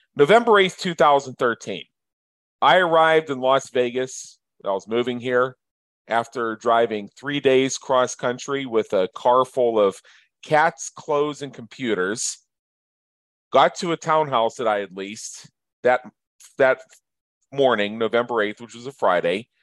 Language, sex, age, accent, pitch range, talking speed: English, male, 40-59, American, 115-145 Hz, 140 wpm